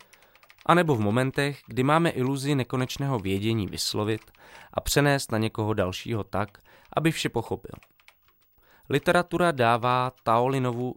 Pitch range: 100-130 Hz